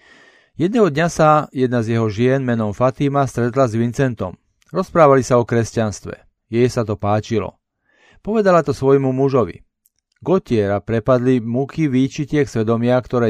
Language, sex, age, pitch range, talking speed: Slovak, male, 40-59, 115-145 Hz, 135 wpm